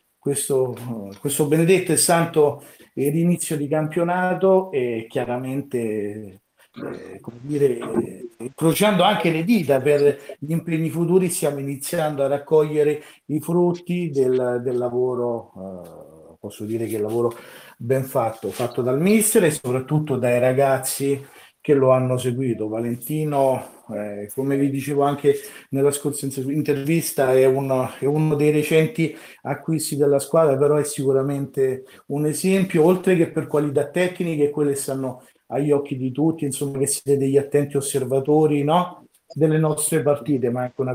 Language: Italian